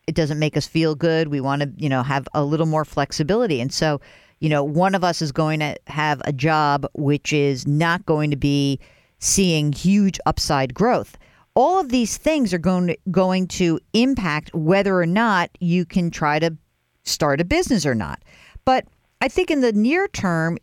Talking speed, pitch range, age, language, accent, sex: 200 wpm, 155-205 Hz, 50-69, English, American, female